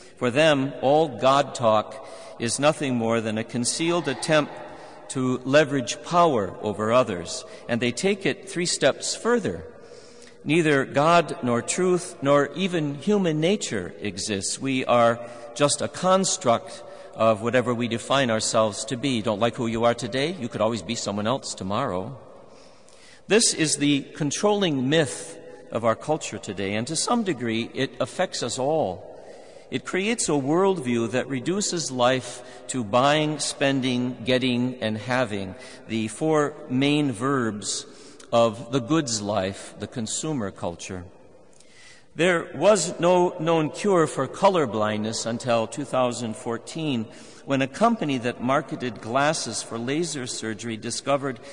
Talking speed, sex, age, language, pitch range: 135 wpm, male, 50-69, English, 115-150 Hz